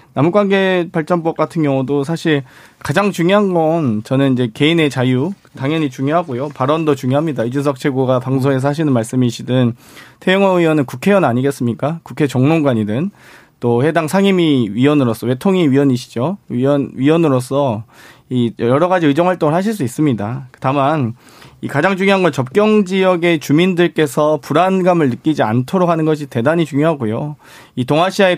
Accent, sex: native, male